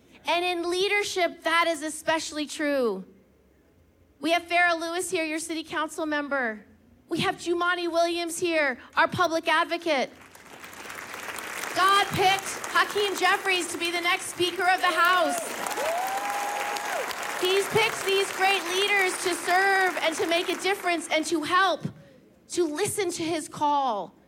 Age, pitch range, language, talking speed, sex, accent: 40-59, 320-375 Hz, English, 140 wpm, female, American